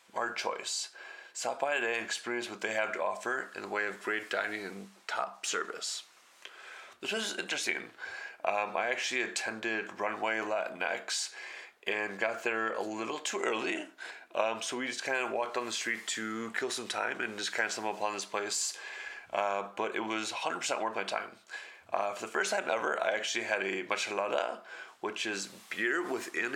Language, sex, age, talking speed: English, male, 20-39, 185 wpm